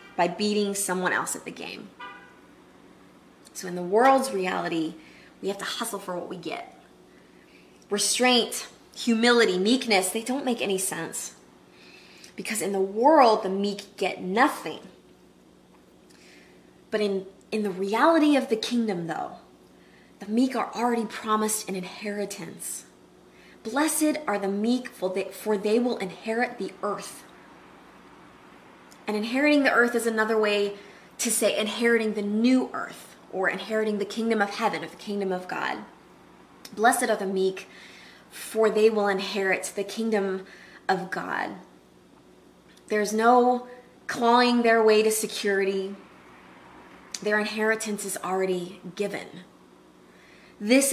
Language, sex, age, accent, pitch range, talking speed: English, female, 20-39, American, 190-230 Hz, 130 wpm